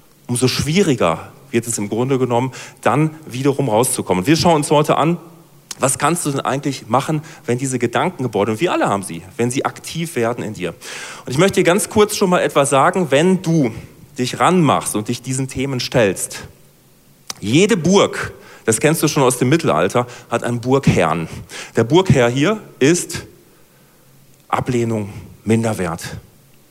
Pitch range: 130-180 Hz